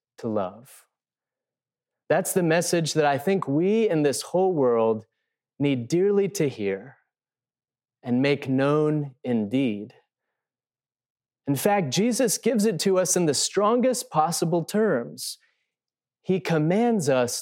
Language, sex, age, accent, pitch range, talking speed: English, male, 30-49, American, 130-170 Hz, 125 wpm